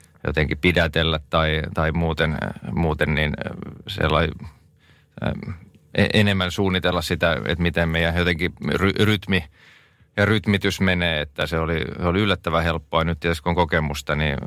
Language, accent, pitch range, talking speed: Finnish, native, 75-85 Hz, 135 wpm